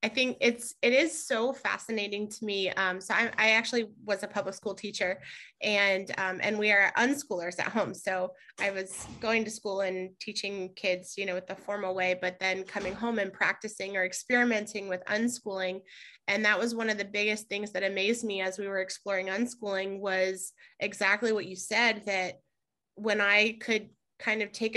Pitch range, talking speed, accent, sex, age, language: 190-220 Hz, 195 wpm, American, female, 20-39, English